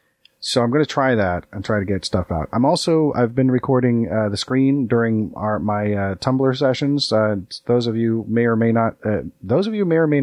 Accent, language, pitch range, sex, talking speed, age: American, English, 95-120 Hz, male, 240 wpm, 30-49